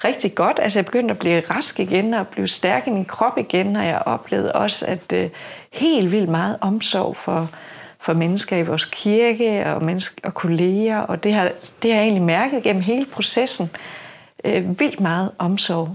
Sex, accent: female, native